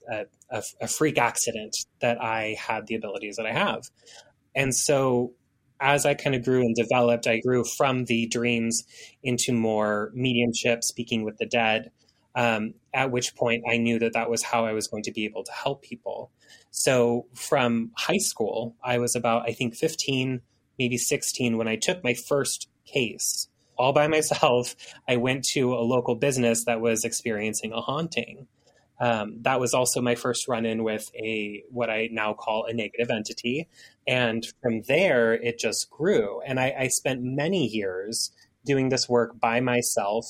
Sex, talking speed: male, 175 wpm